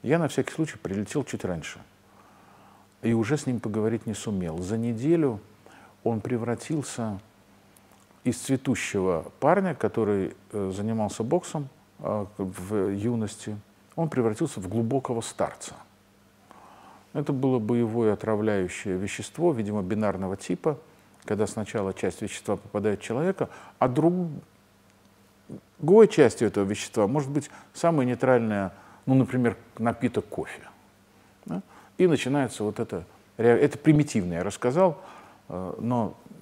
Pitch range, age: 100-135 Hz, 50-69